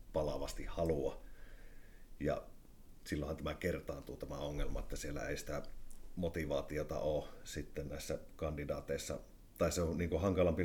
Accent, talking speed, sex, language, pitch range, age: native, 125 wpm, male, Finnish, 75-85 Hz, 50-69